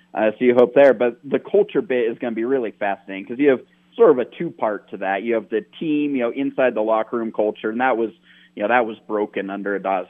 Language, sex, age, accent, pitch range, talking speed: English, male, 30-49, American, 100-125 Hz, 280 wpm